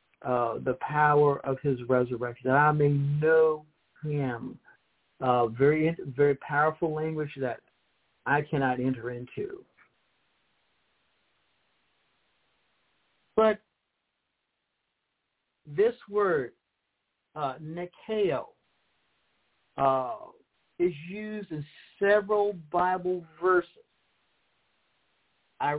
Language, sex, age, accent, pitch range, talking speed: English, male, 60-79, American, 125-170 Hz, 80 wpm